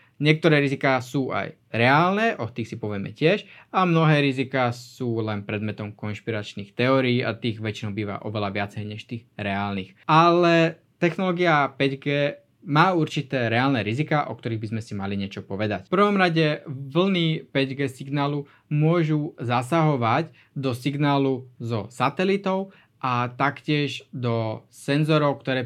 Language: Slovak